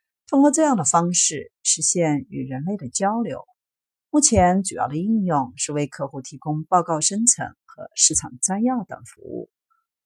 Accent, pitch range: native, 155-250 Hz